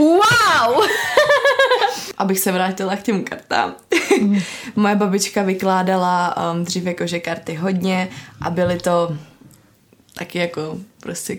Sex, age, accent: female, 20-39, native